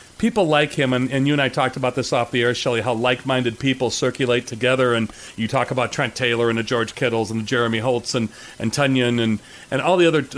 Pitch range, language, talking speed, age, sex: 125-145 Hz, English, 250 wpm, 40-59, male